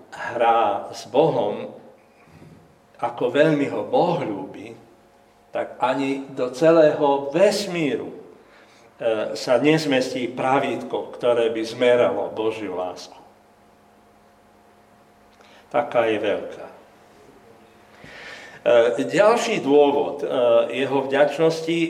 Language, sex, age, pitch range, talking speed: Slovak, male, 60-79, 115-165 Hz, 75 wpm